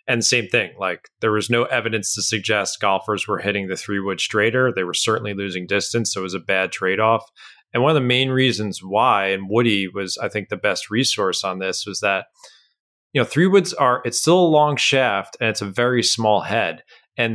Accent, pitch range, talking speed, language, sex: American, 100-120 Hz, 225 wpm, English, male